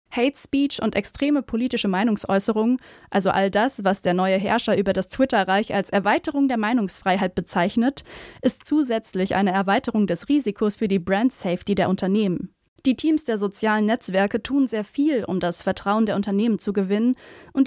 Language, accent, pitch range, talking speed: German, German, 195-245 Hz, 165 wpm